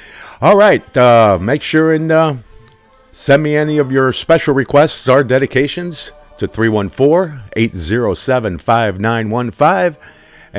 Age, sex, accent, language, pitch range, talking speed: 50-69, male, American, English, 105-140 Hz, 95 wpm